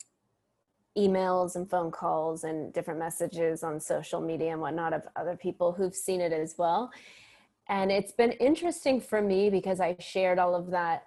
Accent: American